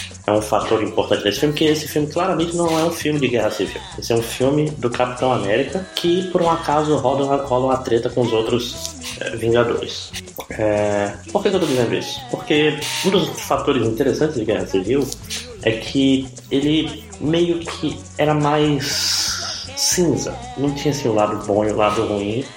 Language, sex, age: Portuguese, male, 20-39